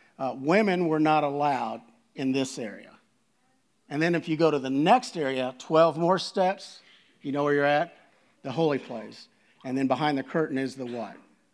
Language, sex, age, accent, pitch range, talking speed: English, male, 50-69, American, 130-175 Hz, 185 wpm